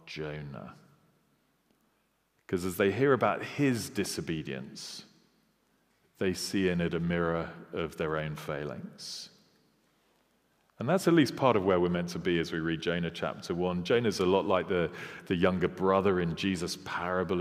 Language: English